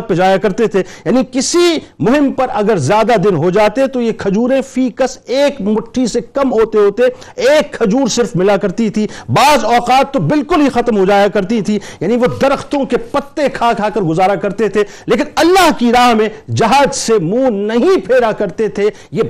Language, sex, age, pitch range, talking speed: Urdu, male, 50-69, 205-255 Hz, 195 wpm